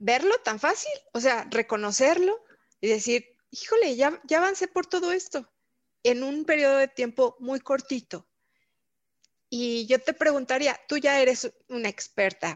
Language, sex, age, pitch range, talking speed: Spanish, female, 30-49, 210-285 Hz, 150 wpm